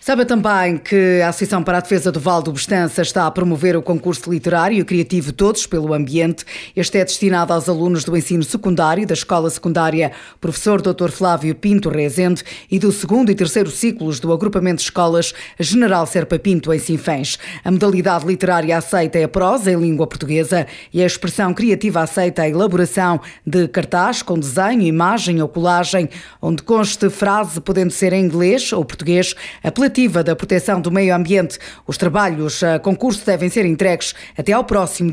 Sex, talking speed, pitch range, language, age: female, 175 wpm, 170-195 Hz, Portuguese, 20-39